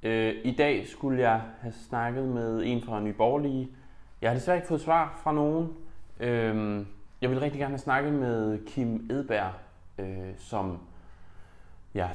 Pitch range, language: 100-140 Hz, Danish